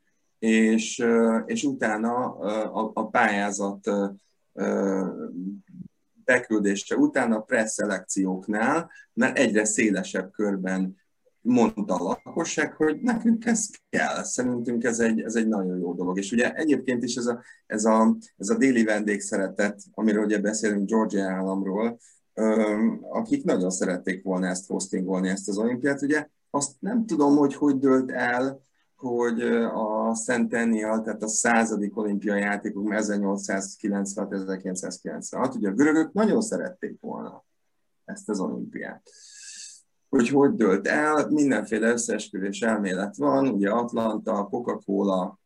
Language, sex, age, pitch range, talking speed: Hungarian, male, 30-49, 100-140 Hz, 120 wpm